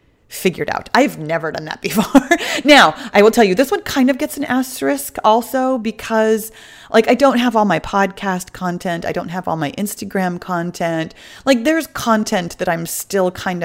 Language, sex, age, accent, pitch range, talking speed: English, female, 30-49, American, 160-220 Hz, 190 wpm